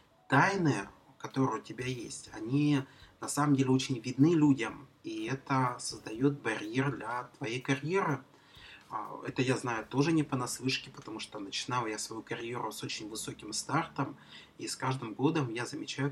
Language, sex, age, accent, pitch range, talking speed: Russian, male, 30-49, native, 110-145 Hz, 155 wpm